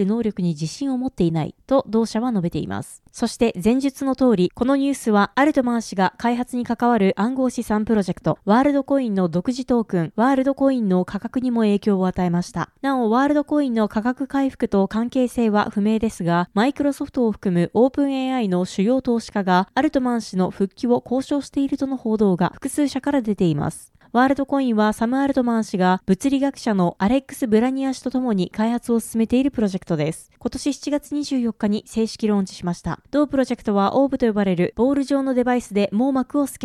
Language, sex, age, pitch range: Japanese, female, 20-39, 200-265 Hz